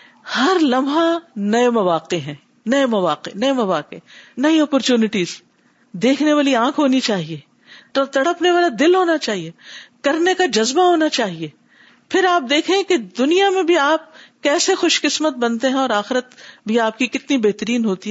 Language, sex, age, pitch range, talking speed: Urdu, female, 50-69, 215-300 Hz, 160 wpm